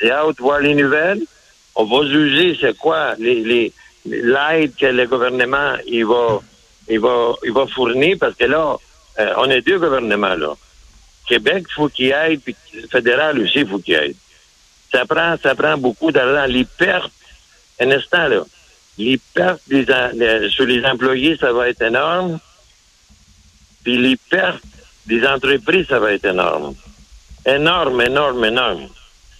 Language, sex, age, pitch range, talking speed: French, male, 60-79, 120-170 Hz, 160 wpm